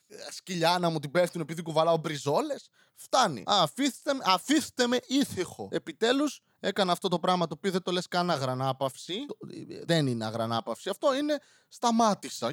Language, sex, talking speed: Greek, male, 160 wpm